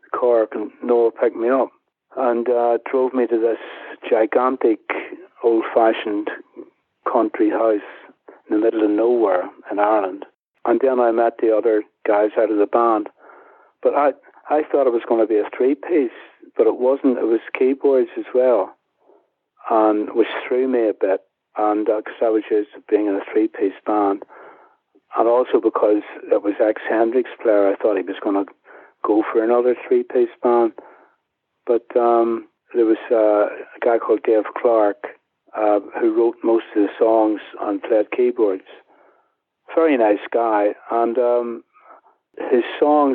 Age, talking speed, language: 60-79, 160 wpm, English